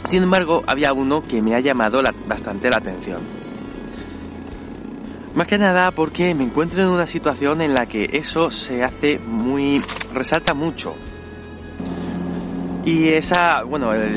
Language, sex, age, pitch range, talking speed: Spanish, male, 20-39, 125-165 Hz, 135 wpm